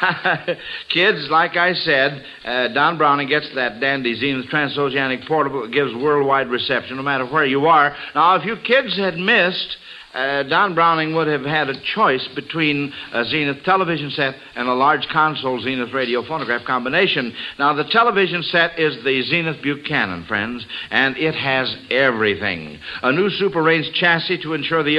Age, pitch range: 60-79, 135-175 Hz